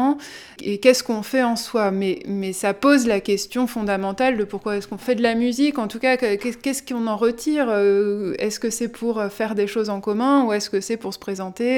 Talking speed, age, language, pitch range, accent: 225 wpm, 20-39, French, 210-250 Hz, French